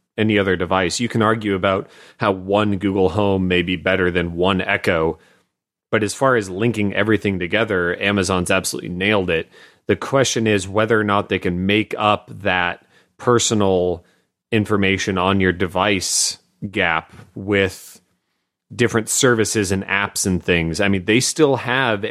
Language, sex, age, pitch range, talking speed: English, male, 30-49, 90-115 Hz, 155 wpm